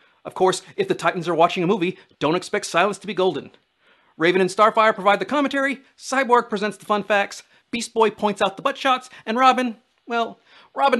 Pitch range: 175-240 Hz